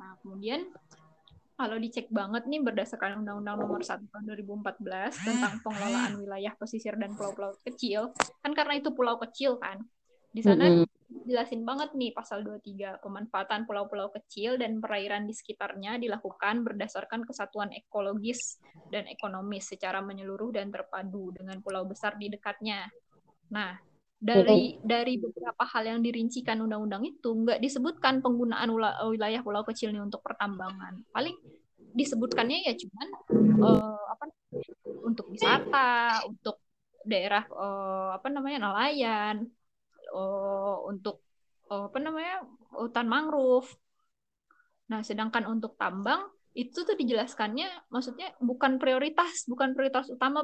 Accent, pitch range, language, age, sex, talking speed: native, 205-255 Hz, Indonesian, 20-39, female, 125 wpm